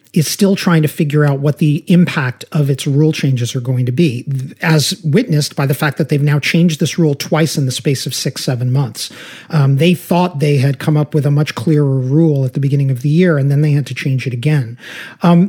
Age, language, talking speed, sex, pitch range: 40-59, English, 245 wpm, male, 135-165 Hz